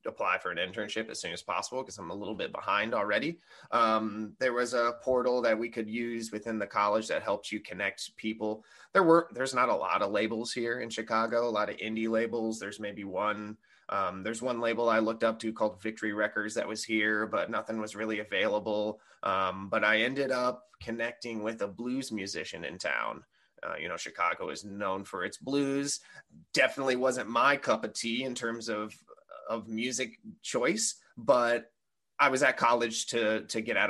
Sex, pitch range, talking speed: male, 105-120 Hz, 200 wpm